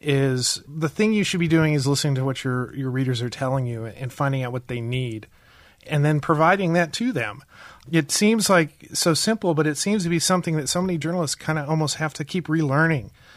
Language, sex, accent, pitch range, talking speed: English, male, American, 135-155 Hz, 230 wpm